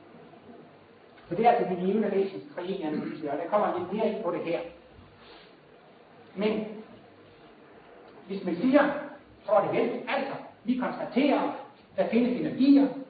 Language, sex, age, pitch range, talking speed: Danish, male, 60-79, 165-250 Hz, 140 wpm